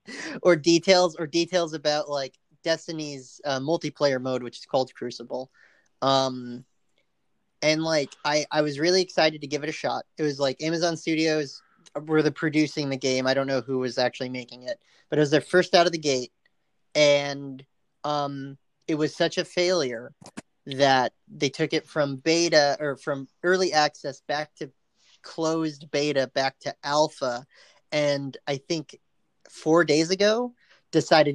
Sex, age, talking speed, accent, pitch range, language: male, 30-49, 165 wpm, American, 135-160 Hz, English